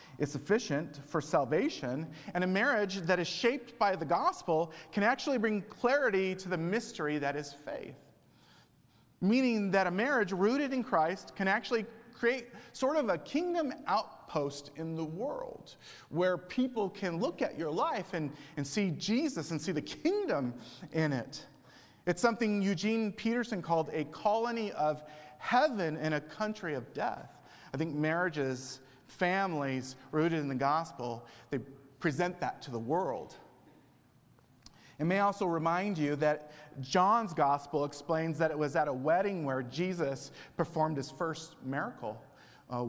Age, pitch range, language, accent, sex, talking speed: 40-59, 140-200 Hz, English, American, male, 155 wpm